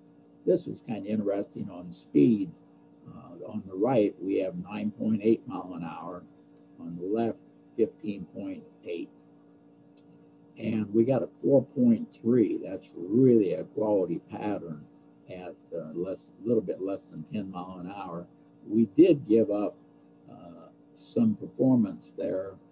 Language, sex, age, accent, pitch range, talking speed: English, male, 60-79, American, 95-125 Hz, 130 wpm